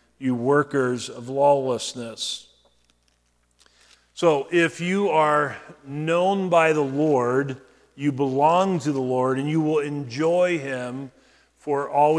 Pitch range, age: 135-170 Hz, 40-59